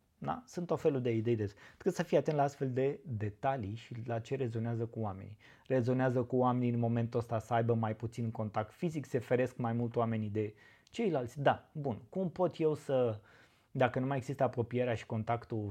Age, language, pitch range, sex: 20-39, Romanian, 110-135 Hz, male